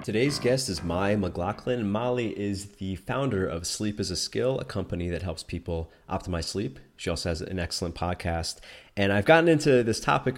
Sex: male